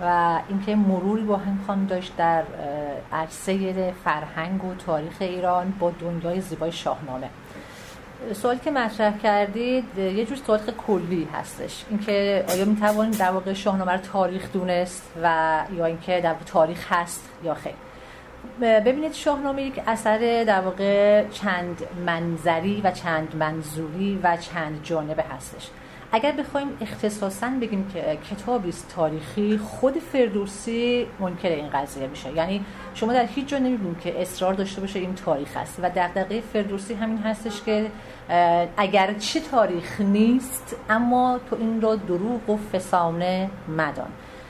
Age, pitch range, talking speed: 40-59, 170-220 Hz, 140 wpm